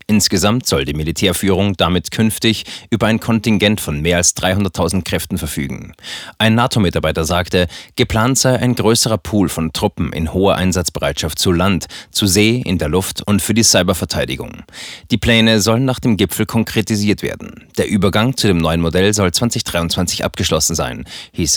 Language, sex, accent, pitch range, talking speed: German, male, German, 85-110 Hz, 160 wpm